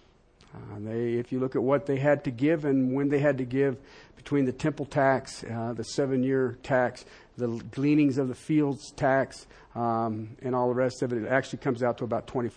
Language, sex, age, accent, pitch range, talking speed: English, male, 50-69, American, 125-195 Hz, 210 wpm